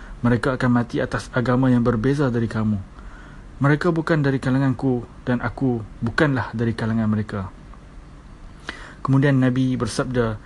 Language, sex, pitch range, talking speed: Indonesian, male, 115-140 Hz, 125 wpm